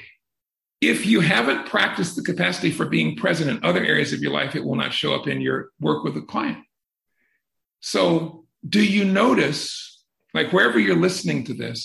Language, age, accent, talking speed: English, 50-69, American, 180 wpm